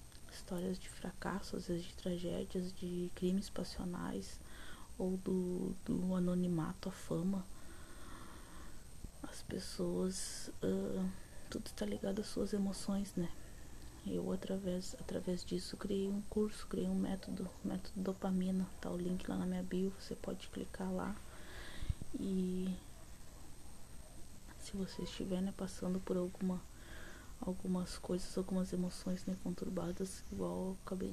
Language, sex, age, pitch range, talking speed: Portuguese, female, 20-39, 180-195 Hz, 125 wpm